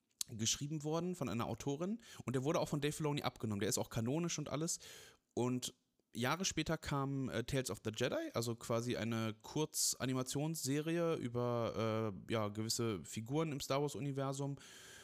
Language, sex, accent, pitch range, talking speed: German, male, German, 110-140 Hz, 160 wpm